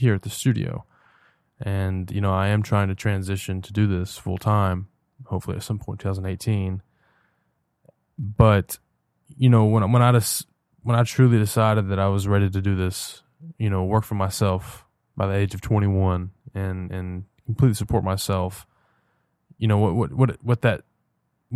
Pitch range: 95-115 Hz